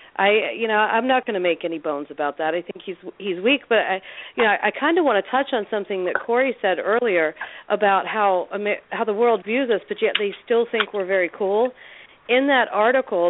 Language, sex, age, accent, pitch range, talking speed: English, female, 40-59, American, 185-225 Hz, 235 wpm